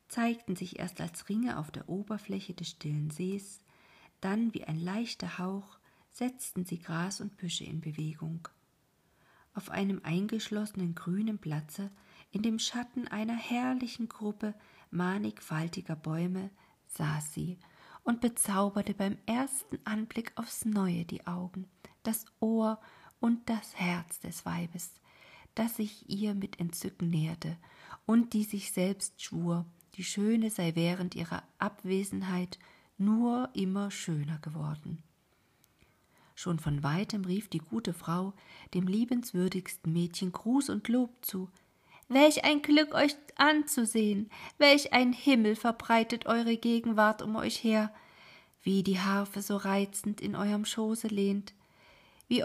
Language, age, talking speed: German, 40-59, 130 wpm